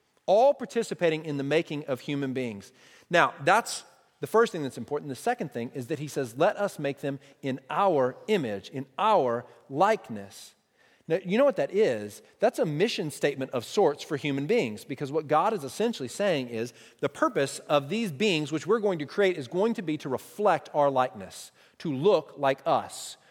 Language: English